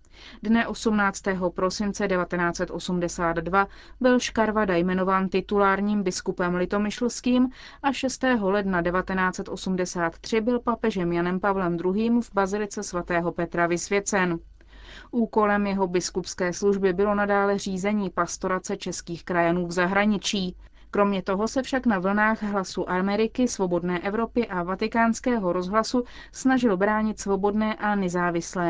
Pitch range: 180-215 Hz